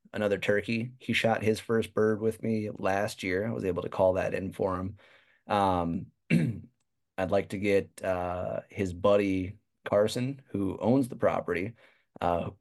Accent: American